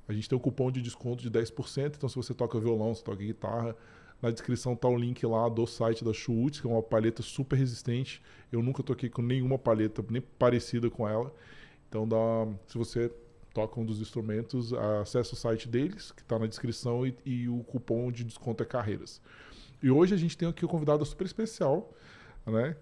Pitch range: 115-140 Hz